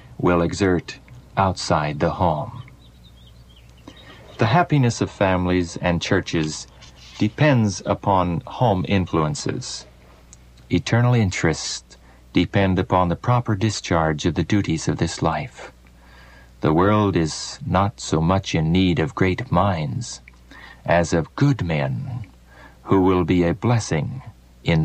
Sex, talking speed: male, 120 wpm